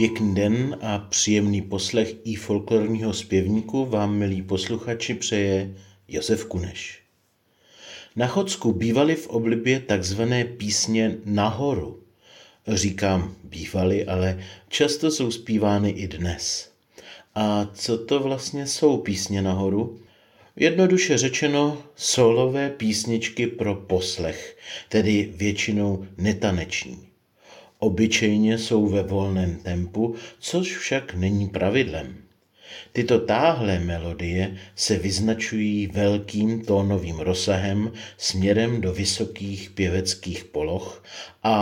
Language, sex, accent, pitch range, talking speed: Czech, male, native, 95-115 Hz, 100 wpm